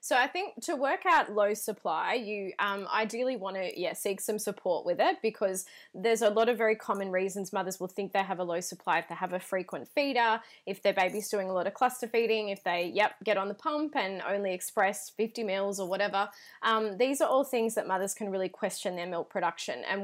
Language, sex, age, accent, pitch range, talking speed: English, female, 20-39, Australian, 190-230 Hz, 235 wpm